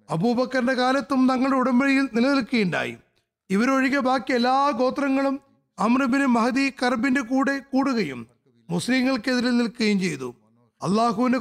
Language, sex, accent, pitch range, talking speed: Malayalam, male, native, 200-270 Hz, 90 wpm